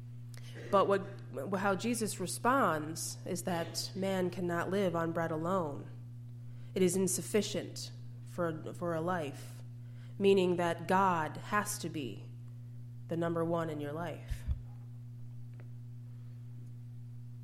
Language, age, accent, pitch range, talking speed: English, 20-39, American, 120-175 Hz, 105 wpm